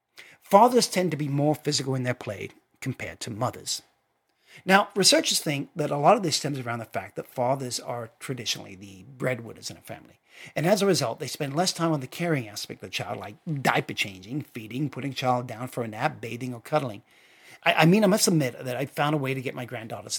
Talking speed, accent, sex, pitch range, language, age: 225 wpm, American, male, 125-165 Hz, English, 50-69